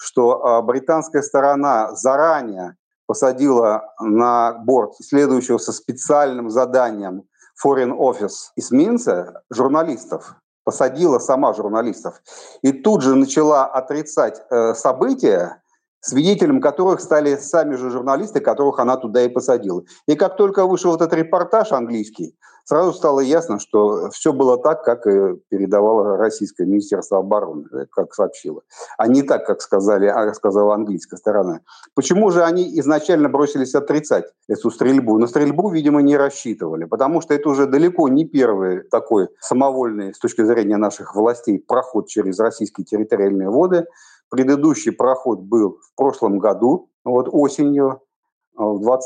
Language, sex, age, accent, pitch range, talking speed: Russian, male, 40-59, native, 120-180 Hz, 130 wpm